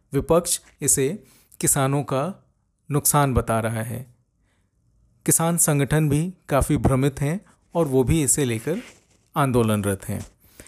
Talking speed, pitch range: 120 wpm, 120-155 Hz